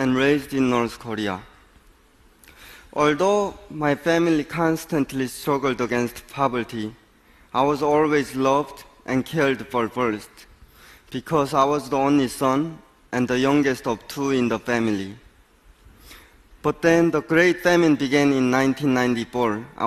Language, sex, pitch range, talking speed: English, male, 120-150 Hz, 125 wpm